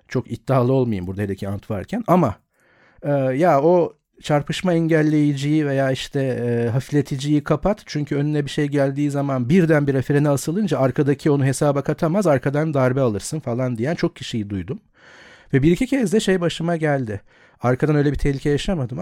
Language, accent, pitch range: Turkish, native, 125-160 Hz